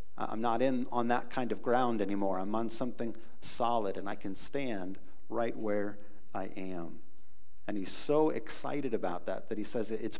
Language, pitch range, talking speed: English, 105-125 Hz, 180 wpm